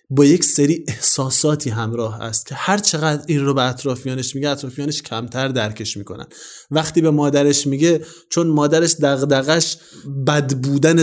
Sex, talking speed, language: male, 145 wpm, Persian